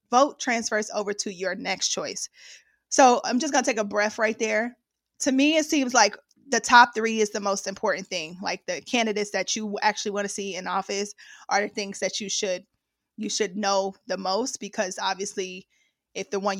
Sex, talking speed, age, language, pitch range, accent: female, 205 wpm, 20-39, English, 200-245 Hz, American